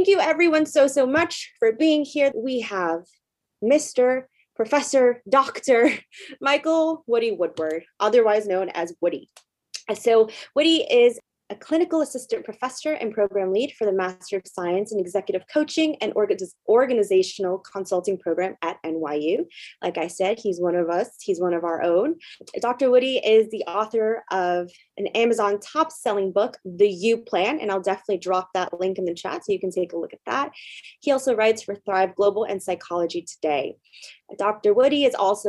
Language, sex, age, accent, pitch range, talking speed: English, female, 20-39, American, 190-275 Hz, 170 wpm